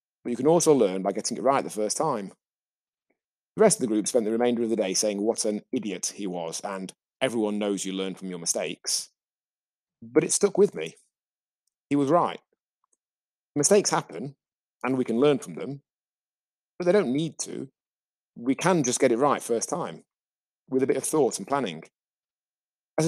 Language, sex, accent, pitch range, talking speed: English, male, British, 105-135 Hz, 190 wpm